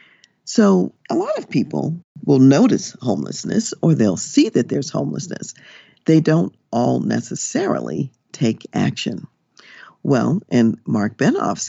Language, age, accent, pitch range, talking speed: English, 50-69, American, 125-195 Hz, 125 wpm